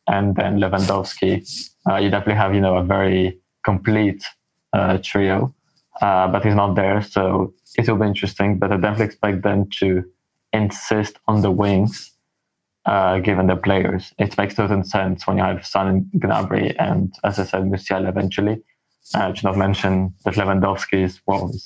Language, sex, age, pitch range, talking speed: English, male, 20-39, 95-105 Hz, 170 wpm